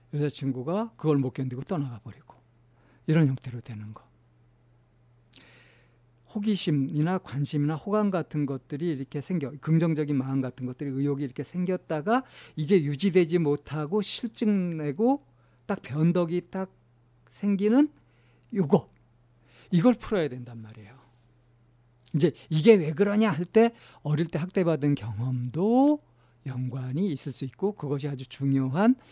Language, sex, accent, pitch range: Korean, male, native, 120-175 Hz